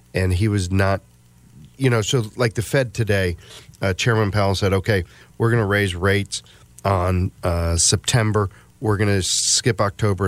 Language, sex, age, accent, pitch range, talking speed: English, male, 40-59, American, 90-105 Hz, 170 wpm